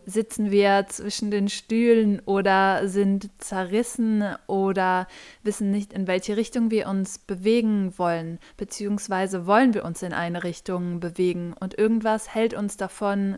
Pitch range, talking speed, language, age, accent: 195-220 Hz, 140 wpm, German, 20-39, German